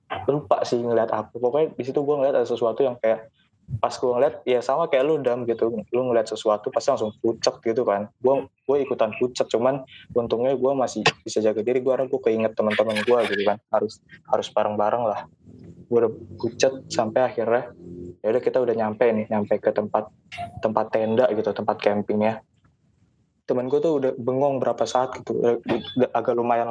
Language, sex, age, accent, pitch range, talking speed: Indonesian, male, 20-39, native, 110-130 Hz, 175 wpm